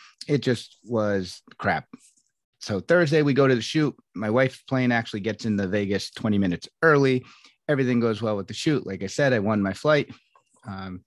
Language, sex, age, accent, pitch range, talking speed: English, male, 30-49, American, 105-135 Hz, 195 wpm